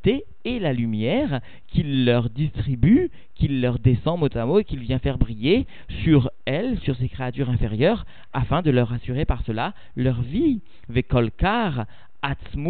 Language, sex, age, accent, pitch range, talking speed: French, male, 50-69, French, 120-155 Hz, 145 wpm